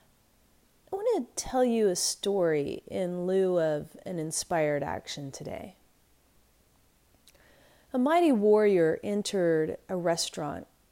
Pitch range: 175-235 Hz